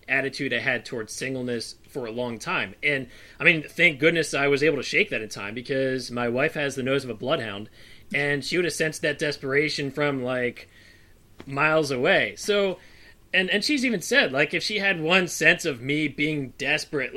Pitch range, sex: 125-155 Hz, male